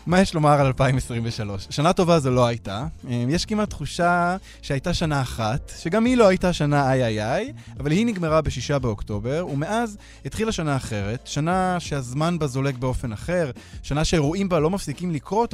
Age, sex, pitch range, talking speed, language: 20-39, male, 120-175 Hz, 175 wpm, Hebrew